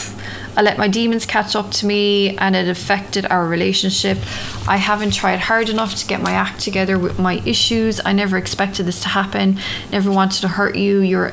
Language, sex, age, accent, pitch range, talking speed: English, female, 20-39, Irish, 180-205 Hz, 200 wpm